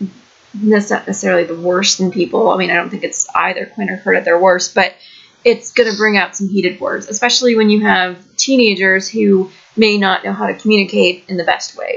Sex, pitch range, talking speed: female, 195-250 Hz, 225 wpm